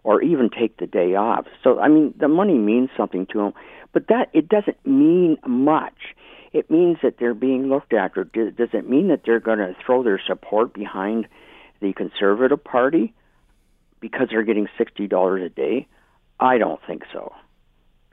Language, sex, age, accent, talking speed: English, male, 50-69, American, 175 wpm